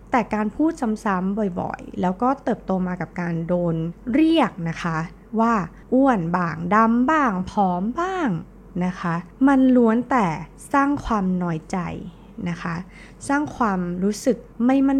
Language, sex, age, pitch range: Thai, female, 20-39, 170-225 Hz